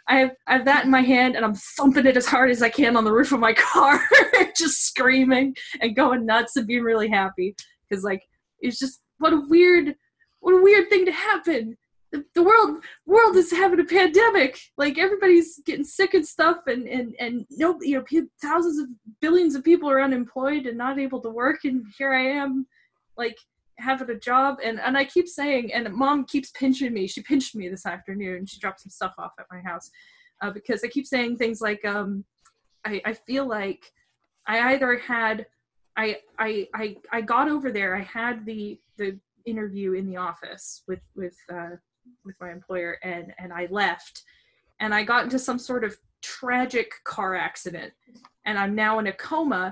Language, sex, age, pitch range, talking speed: English, female, 10-29, 215-295 Hz, 195 wpm